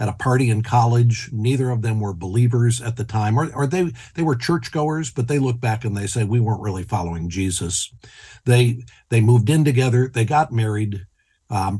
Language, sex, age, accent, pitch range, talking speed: English, male, 60-79, American, 105-125 Hz, 205 wpm